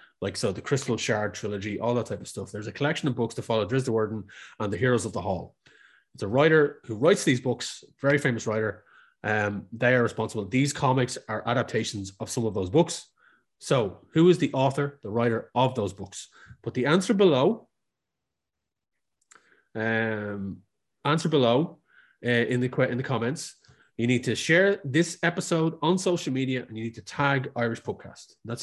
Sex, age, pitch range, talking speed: male, 30-49, 115-145 Hz, 190 wpm